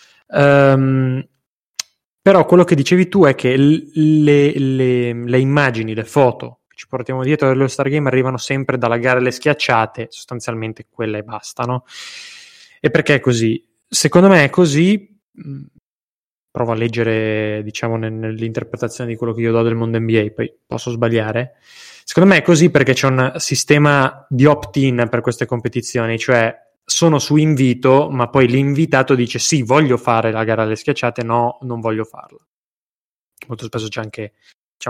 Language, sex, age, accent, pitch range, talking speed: Italian, male, 20-39, native, 115-140 Hz, 160 wpm